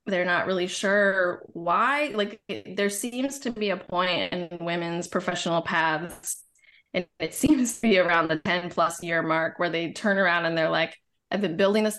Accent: American